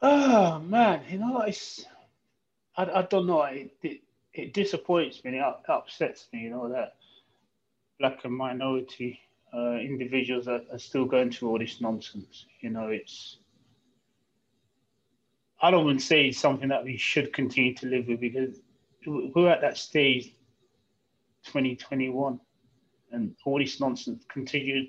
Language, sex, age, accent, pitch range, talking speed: English, male, 30-49, British, 125-150 Hz, 145 wpm